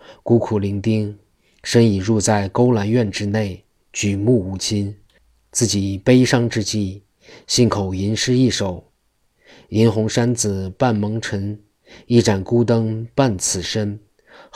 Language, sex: Chinese, male